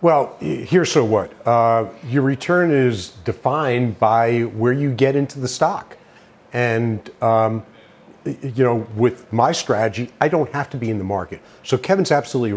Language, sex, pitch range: English, male, 125-185 Hz